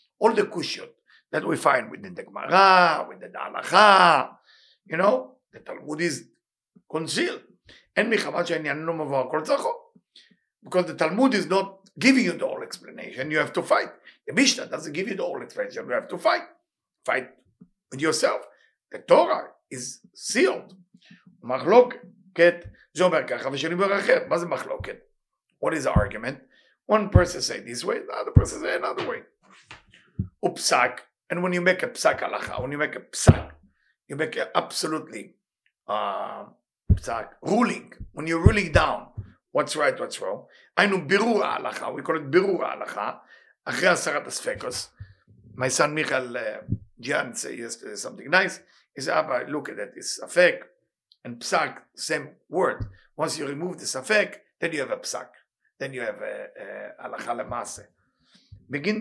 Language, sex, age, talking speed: English, male, 50-69, 145 wpm